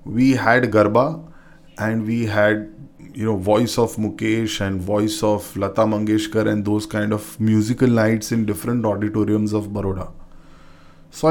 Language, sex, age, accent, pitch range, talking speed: English, male, 20-39, Indian, 105-135 Hz, 150 wpm